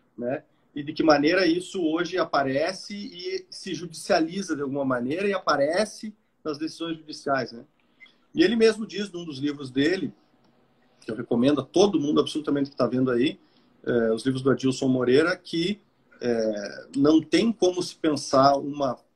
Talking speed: 165 wpm